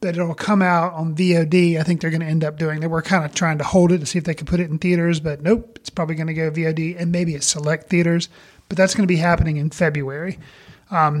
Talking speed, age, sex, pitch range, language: 285 wpm, 30-49, male, 160-190 Hz, English